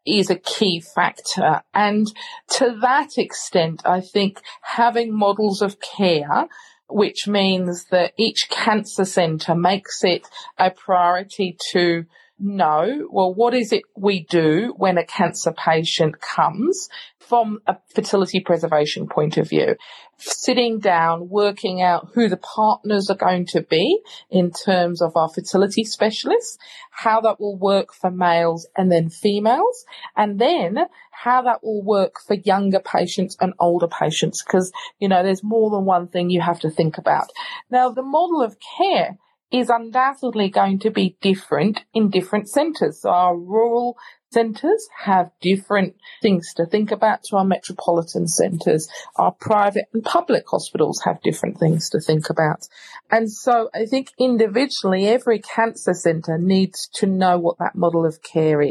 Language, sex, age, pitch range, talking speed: English, female, 40-59, 180-235 Hz, 150 wpm